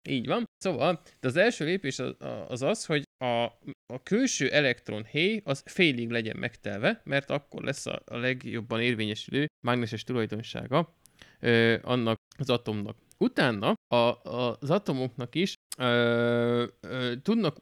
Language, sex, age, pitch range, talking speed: Hungarian, male, 20-39, 115-145 Hz, 140 wpm